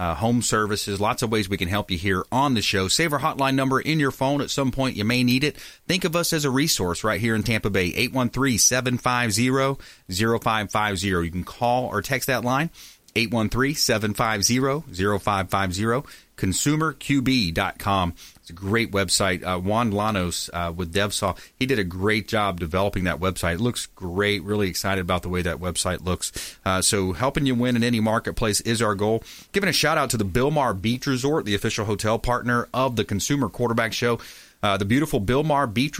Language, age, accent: English, 30-49, American